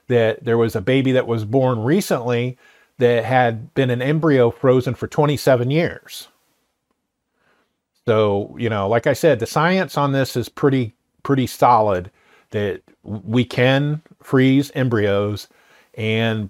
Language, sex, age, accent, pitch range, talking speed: English, male, 50-69, American, 115-145 Hz, 140 wpm